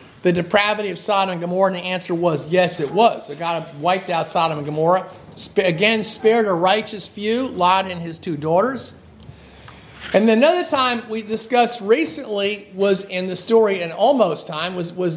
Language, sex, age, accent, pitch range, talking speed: English, male, 50-69, American, 180-230 Hz, 180 wpm